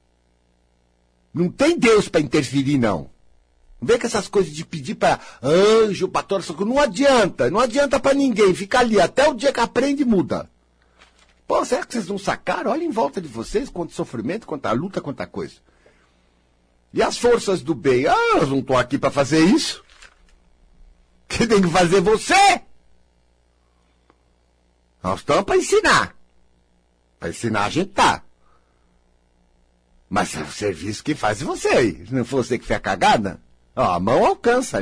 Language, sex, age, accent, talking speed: Portuguese, male, 60-79, Brazilian, 165 wpm